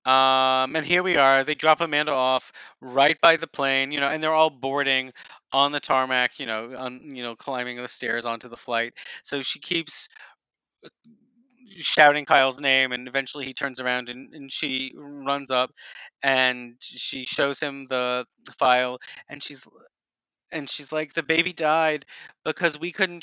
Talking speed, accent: 175 wpm, American